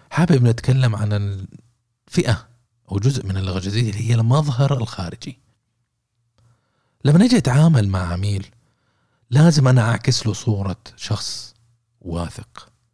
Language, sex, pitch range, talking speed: Arabic, male, 105-120 Hz, 110 wpm